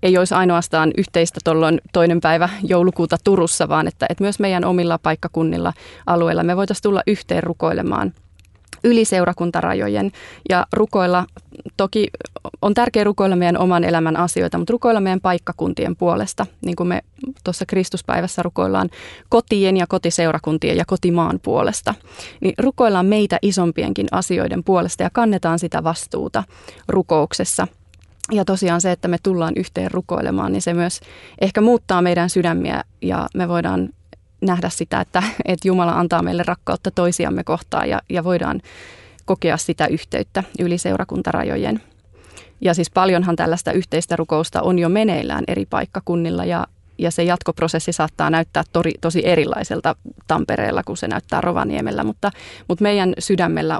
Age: 30-49